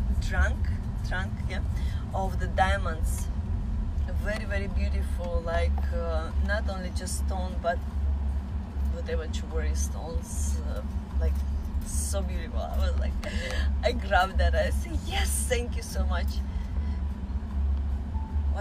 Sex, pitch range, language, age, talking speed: female, 70-85 Hz, English, 20-39, 125 wpm